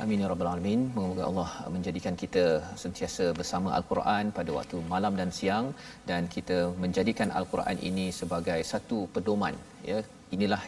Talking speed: 145 wpm